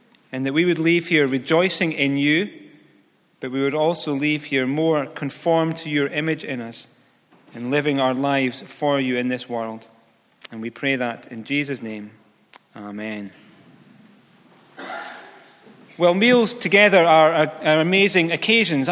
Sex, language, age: male, English, 30-49